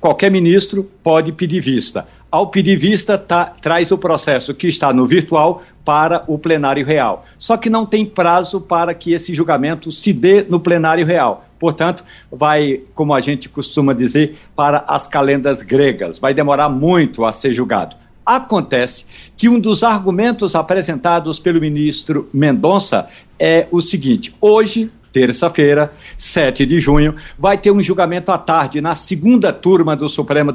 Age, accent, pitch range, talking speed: 60-79, Brazilian, 150-195 Hz, 155 wpm